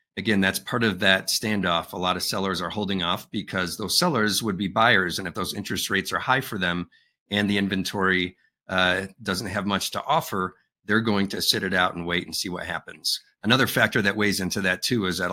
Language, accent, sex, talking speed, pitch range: English, American, male, 225 wpm, 90-110 Hz